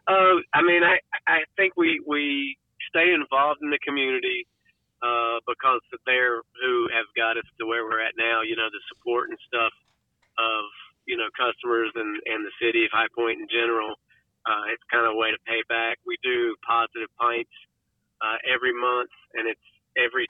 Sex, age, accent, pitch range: male, 50-69, American, 115-150 Hz